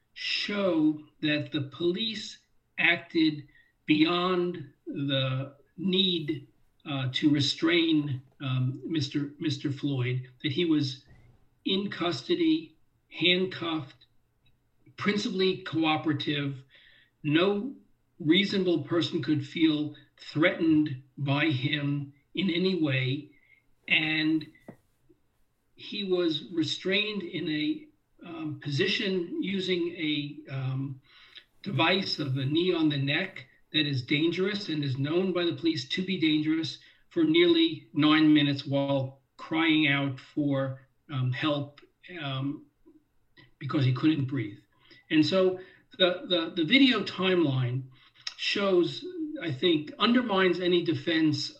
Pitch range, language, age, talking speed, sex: 140-180 Hz, English, 50-69, 105 wpm, male